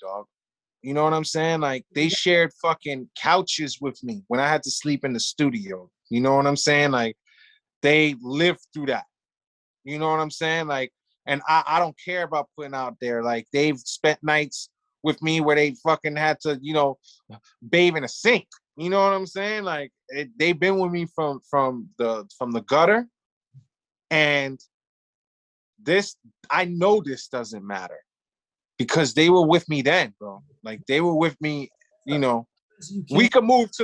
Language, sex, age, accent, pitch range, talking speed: English, male, 20-39, American, 145-190 Hz, 185 wpm